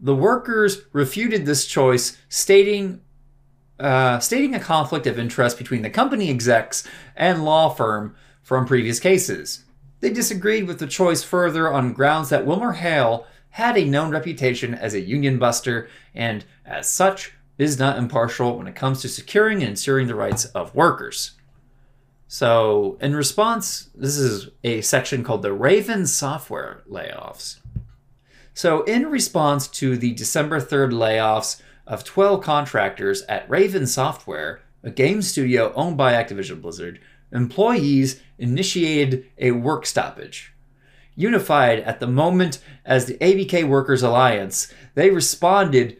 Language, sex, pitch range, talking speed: English, male, 125-175 Hz, 140 wpm